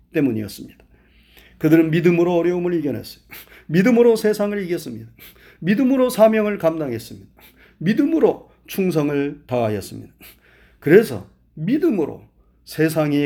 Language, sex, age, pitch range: Korean, male, 30-49, 130-210 Hz